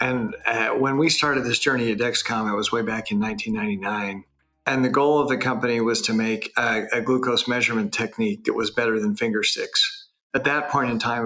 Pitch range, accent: 110-130 Hz, American